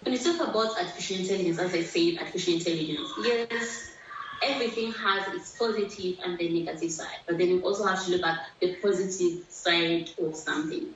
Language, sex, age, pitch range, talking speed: English, female, 20-39, 170-215 Hz, 180 wpm